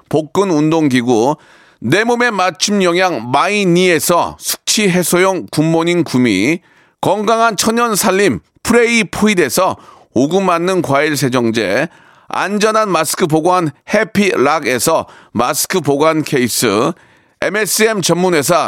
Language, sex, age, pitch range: Korean, male, 40-59, 160-210 Hz